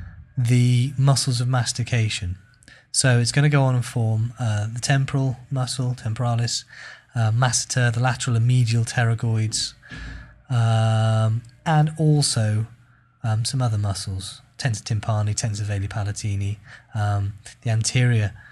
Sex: male